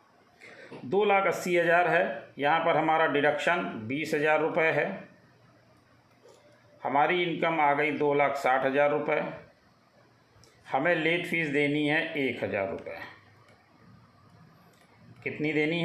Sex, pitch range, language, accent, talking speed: male, 140-170 Hz, Hindi, native, 120 wpm